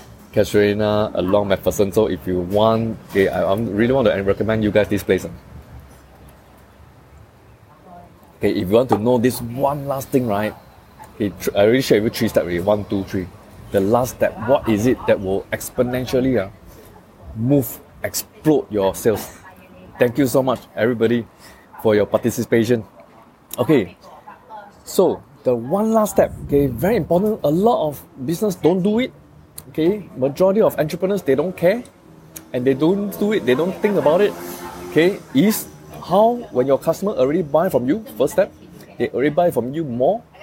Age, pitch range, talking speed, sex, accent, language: 20-39, 105-165 Hz, 165 wpm, male, Malaysian, English